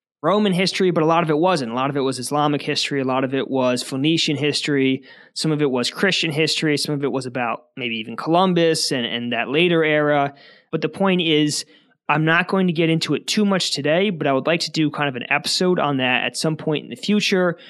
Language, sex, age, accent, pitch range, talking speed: English, male, 20-39, American, 140-165 Hz, 250 wpm